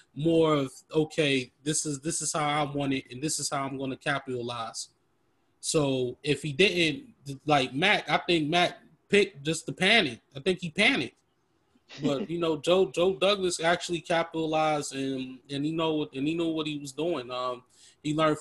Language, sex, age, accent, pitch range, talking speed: English, male, 20-39, American, 130-160 Hz, 190 wpm